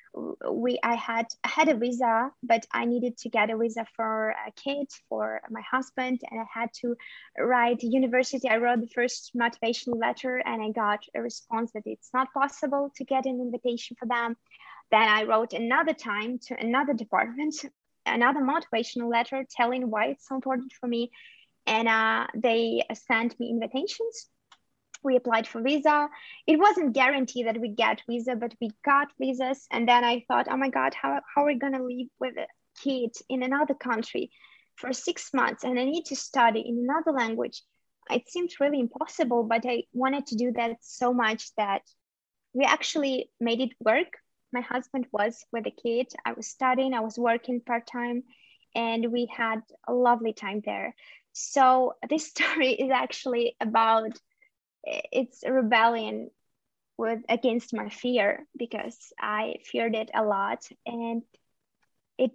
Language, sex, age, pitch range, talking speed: English, female, 20-39, 230-265 Hz, 165 wpm